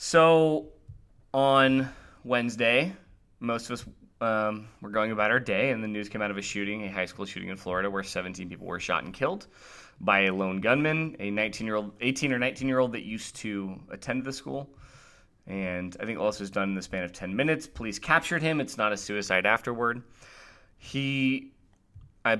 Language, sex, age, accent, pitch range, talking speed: English, male, 20-39, American, 105-135 Hz, 190 wpm